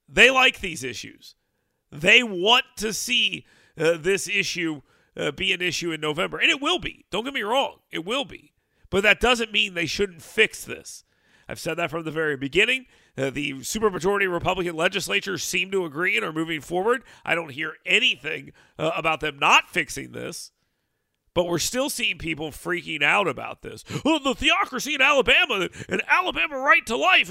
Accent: American